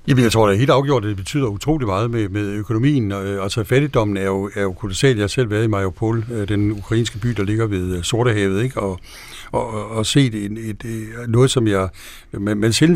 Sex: male